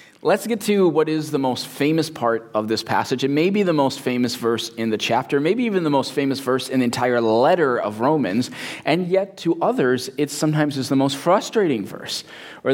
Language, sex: English, male